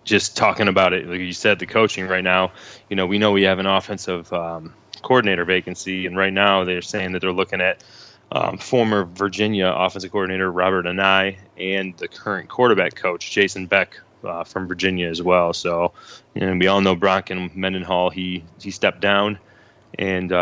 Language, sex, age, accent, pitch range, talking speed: English, male, 20-39, American, 90-100 Hz, 185 wpm